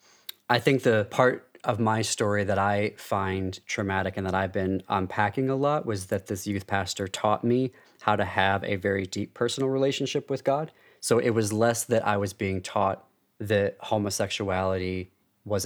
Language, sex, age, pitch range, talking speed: English, male, 30-49, 95-110 Hz, 180 wpm